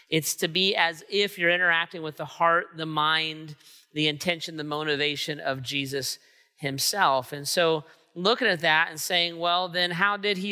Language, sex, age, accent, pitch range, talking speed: English, male, 40-59, American, 155-185 Hz, 175 wpm